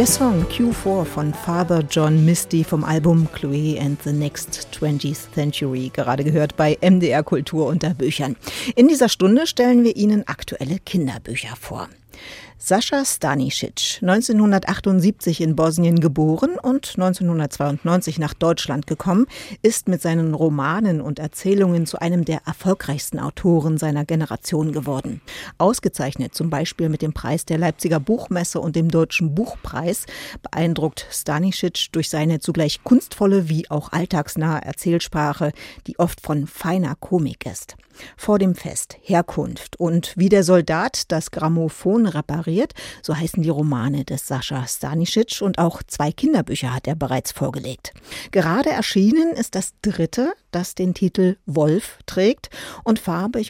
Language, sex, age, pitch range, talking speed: German, female, 50-69, 155-190 Hz, 140 wpm